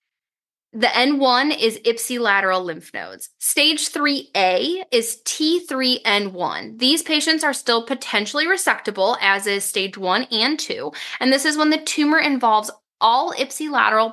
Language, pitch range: English, 215-280 Hz